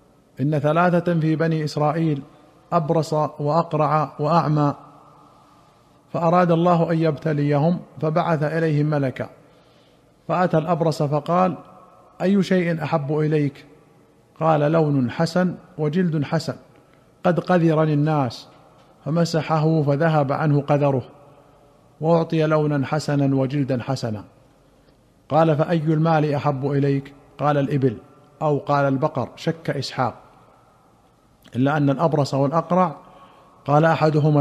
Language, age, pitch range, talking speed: Arabic, 50-69, 140-165 Hz, 100 wpm